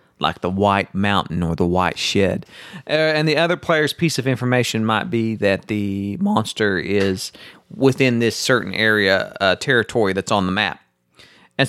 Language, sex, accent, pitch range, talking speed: English, male, American, 110-140 Hz, 170 wpm